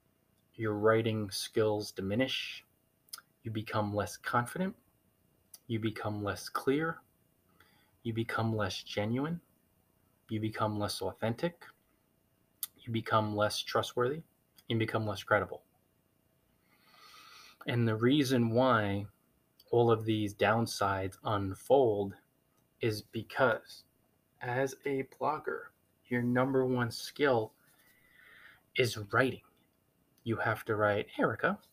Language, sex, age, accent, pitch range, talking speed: English, male, 20-39, American, 105-120 Hz, 100 wpm